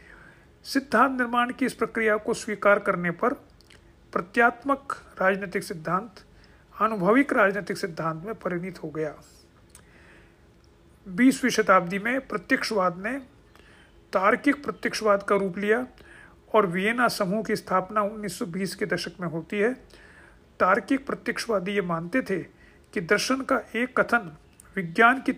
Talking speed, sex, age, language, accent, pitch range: 125 wpm, male, 50-69, Hindi, native, 185-235 Hz